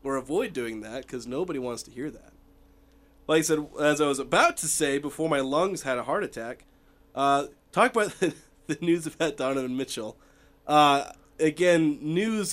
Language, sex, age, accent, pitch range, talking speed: English, male, 30-49, American, 125-155 Hz, 185 wpm